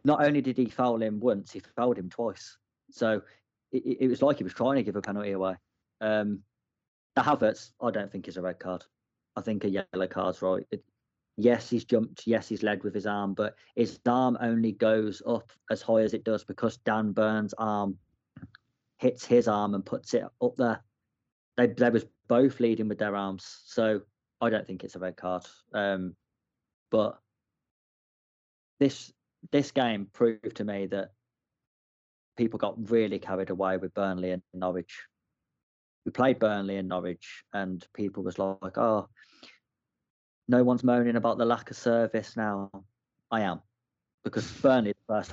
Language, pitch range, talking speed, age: English, 95-115 Hz, 175 wpm, 20-39